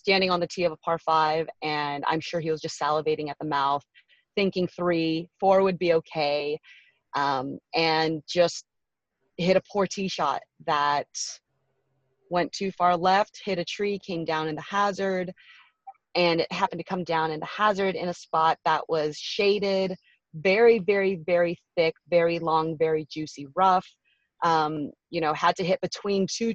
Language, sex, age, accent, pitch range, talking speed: English, female, 30-49, American, 155-190 Hz, 175 wpm